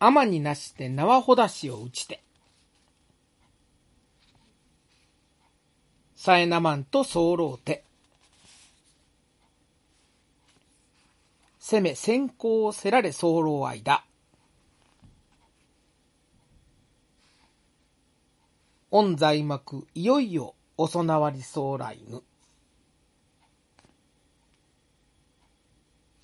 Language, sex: Japanese, male